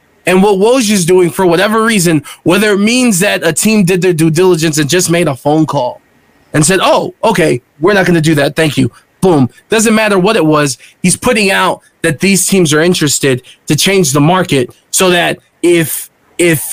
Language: English